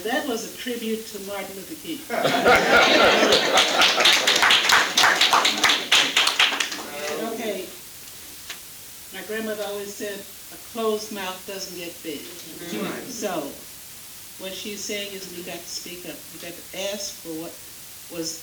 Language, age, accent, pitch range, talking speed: English, 60-79, American, 180-220 Hz, 115 wpm